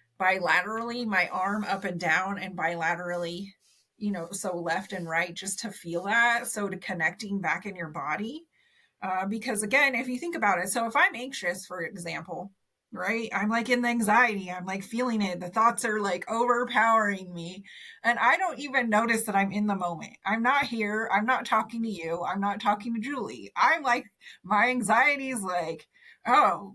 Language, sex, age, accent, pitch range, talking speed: English, female, 30-49, American, 180-230 Hz, 190 wpm